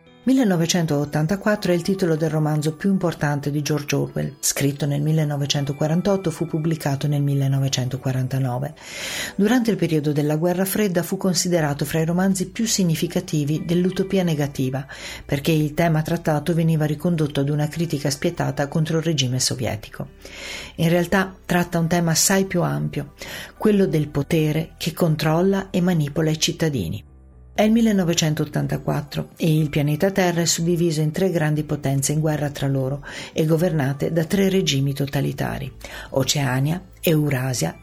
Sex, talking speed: female, 140 wpm